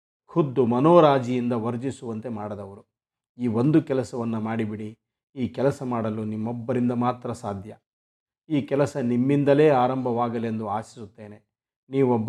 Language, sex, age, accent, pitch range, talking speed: Kannada, male, 50-69, native, 110-130 Hz, 100 wpm